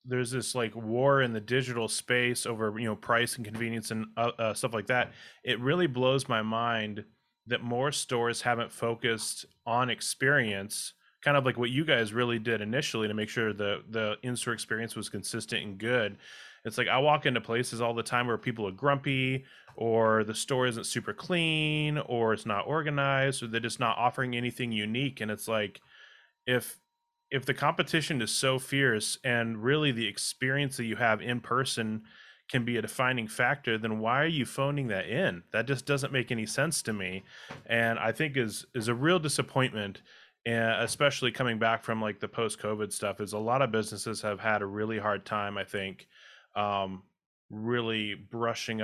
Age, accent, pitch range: 20-39, American, 110-130 Hz